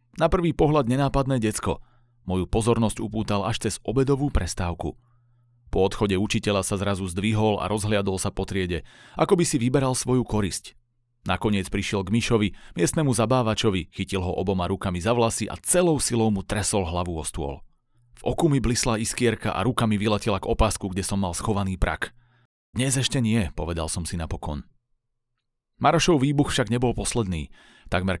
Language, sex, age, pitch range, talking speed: Slovak, male, 30-49, 100-120 Hz, 165 wpm